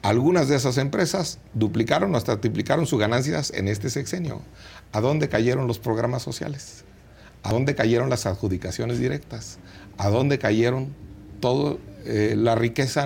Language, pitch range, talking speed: Spanish, 100-145 Hz, 145 wpm